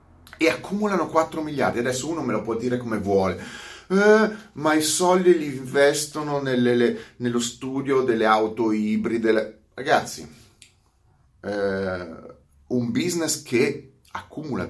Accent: native